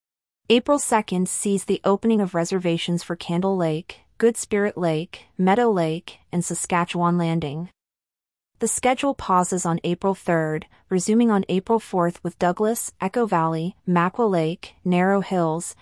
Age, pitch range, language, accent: 30-49, 170-205 Hz, English, American